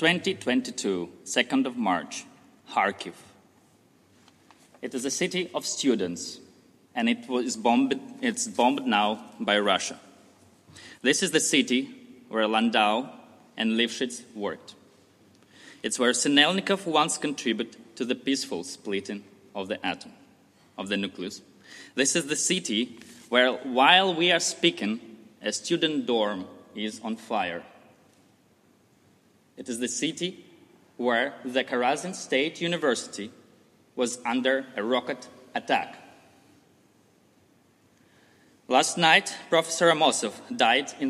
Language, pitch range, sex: Danish, 115-175 Hz, male